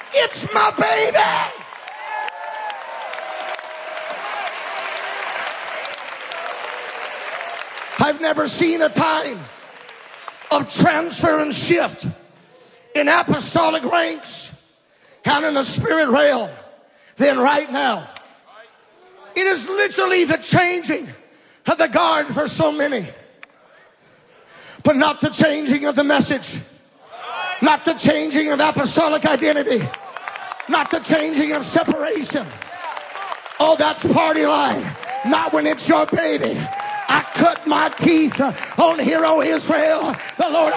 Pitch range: 300-345 Hz